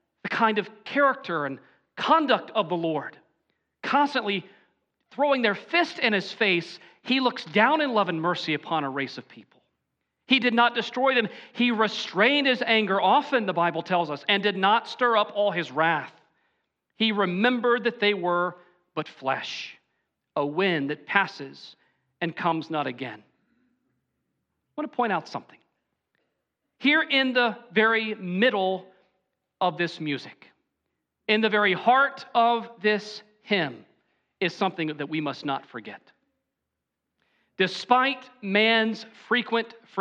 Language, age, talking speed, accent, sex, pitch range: English, 40-59, 145 wpm, American, male, 170-240 Hz